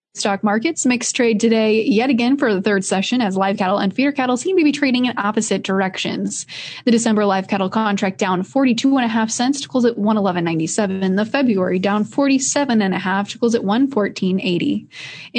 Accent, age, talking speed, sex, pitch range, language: American, 20-39, 195 wpm, female, 195-245 Hz, English